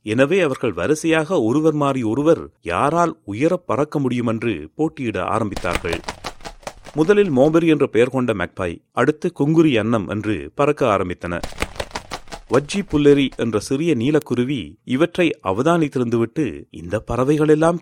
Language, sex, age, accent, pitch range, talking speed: Tamil, male, 30-49, native, 105-155 Hz, 115 wpm